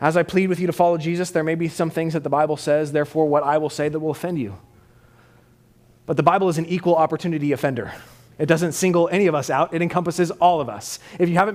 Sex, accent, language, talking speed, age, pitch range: male, American, English, 255 wpm, 30-49, 155-215 Hz